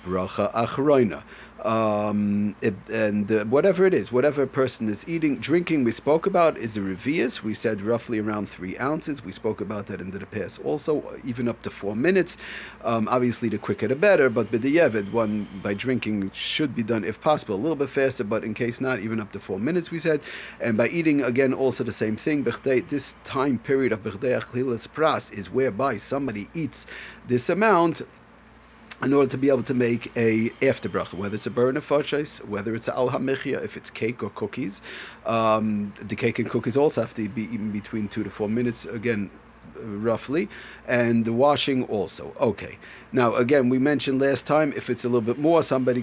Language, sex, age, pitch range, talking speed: English, male, 40-59, 110-135 Hz, 190 wpm